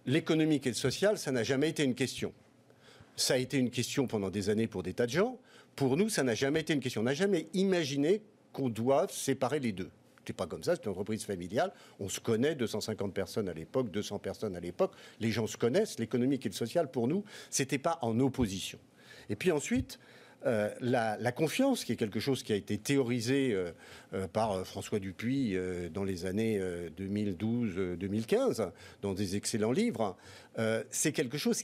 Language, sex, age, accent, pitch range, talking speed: French, male, 50-69, French, 110-160 Hz, 205 wpm